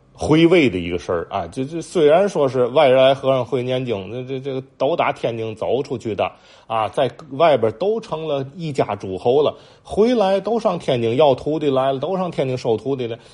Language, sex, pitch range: Chinese, male, 95-140 Hz